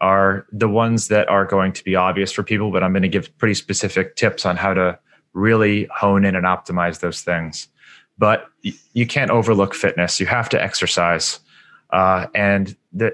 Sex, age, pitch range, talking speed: male, 30-49, 95-115 Hz, 185 wpm